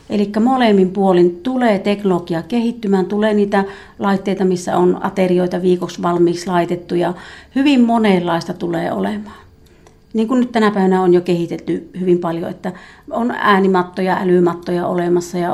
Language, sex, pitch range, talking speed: Finnish, female, 180-215 Hz, 140 wpm